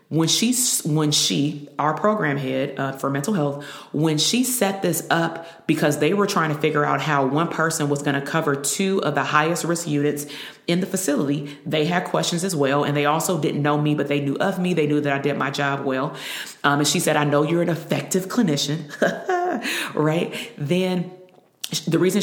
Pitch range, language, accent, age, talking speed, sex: 145-180 Hz, English, American, 30-49, 210 wpm, female